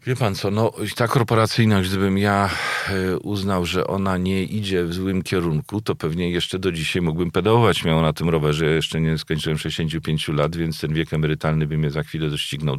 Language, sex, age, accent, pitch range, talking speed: Polish, male, 40-59, native, 80-95 Hz, 200 wpm